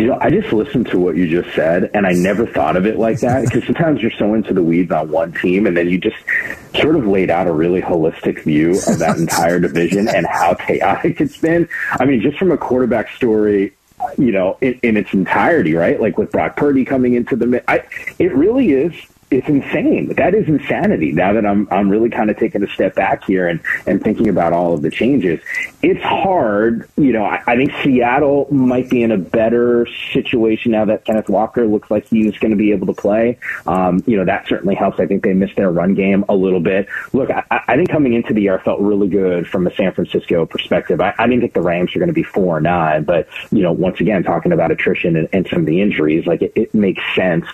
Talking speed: 235 wpm